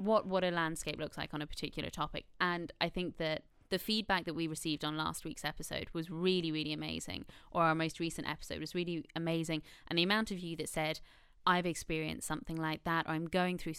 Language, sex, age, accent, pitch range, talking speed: English, female, 20-39, British, 160-175 Hz, 220 wpm